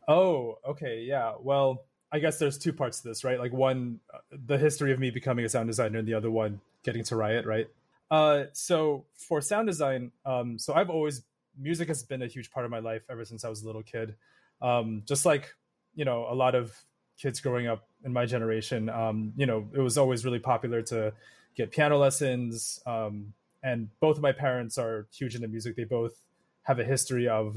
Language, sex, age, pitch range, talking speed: English, male, 20-39, 115-135 Hz, 210 wpm